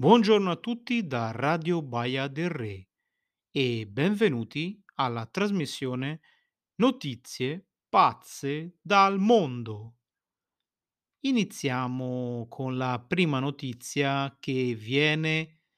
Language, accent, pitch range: Italian, native, 125-175 Hz